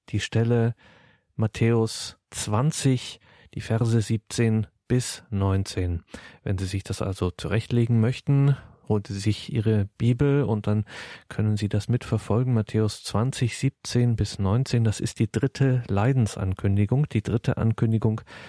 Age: 40-59